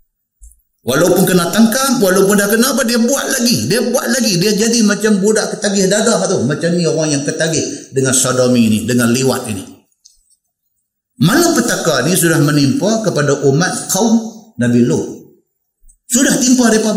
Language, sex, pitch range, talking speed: Malay, male, 115-175 Hz, 155 wpm